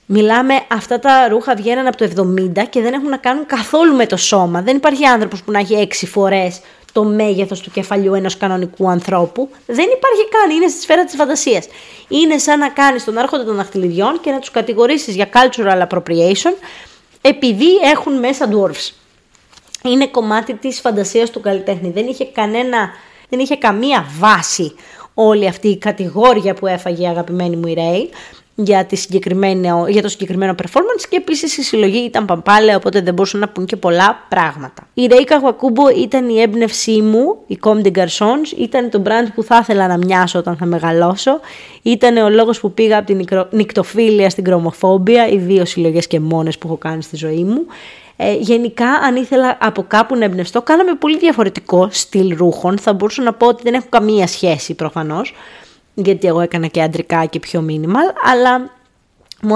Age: 20-39